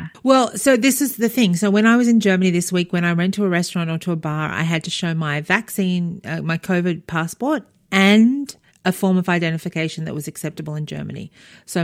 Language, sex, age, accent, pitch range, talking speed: English, female, 40-59, Australian, 160-200 Hz, 230 wpm